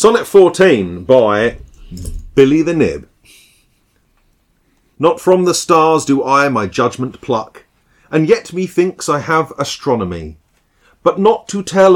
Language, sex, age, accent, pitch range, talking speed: English, male, 40-59, British, 130-180 Hz, 125 wpm